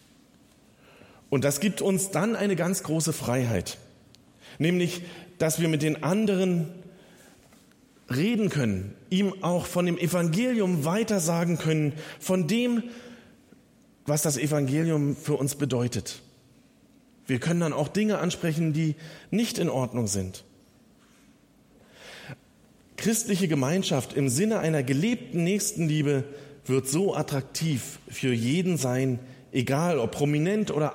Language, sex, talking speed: German, male, 115 wpm